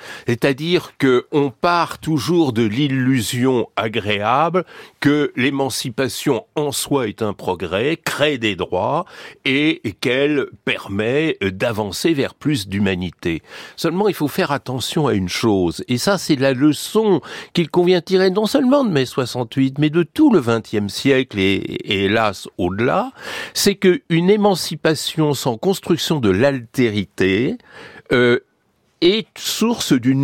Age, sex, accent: 60-79, male, French